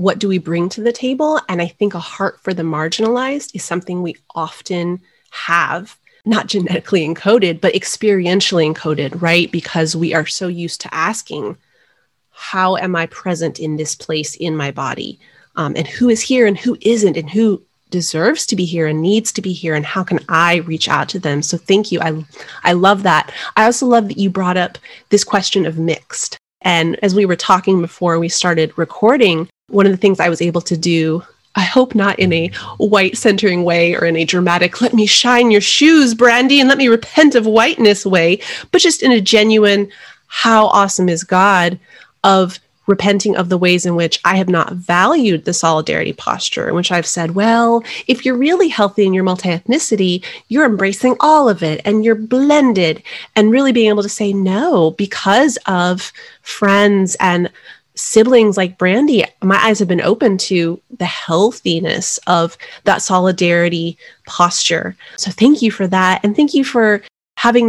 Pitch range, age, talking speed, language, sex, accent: 175-220 Hz, 30-49, 185 wpm, English, female, American